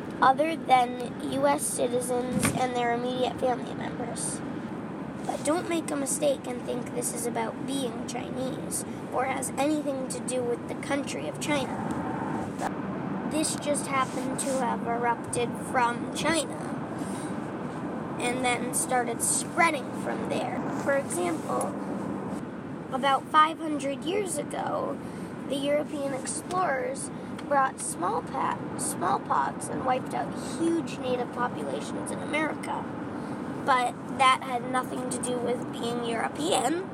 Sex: female